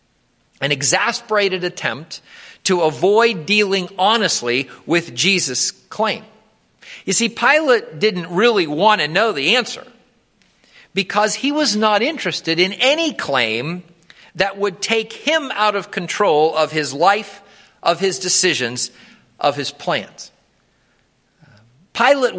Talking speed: 120 wpm